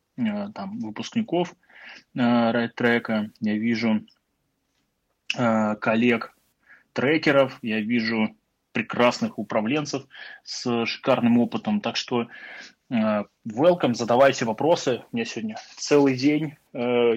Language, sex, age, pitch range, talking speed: Russian, male, 20-39, 115-140 Hz, 95 wpm